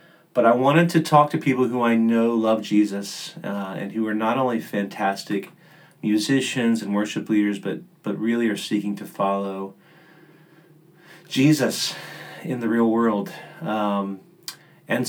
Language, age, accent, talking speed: English, 30-49, American, 145 wpm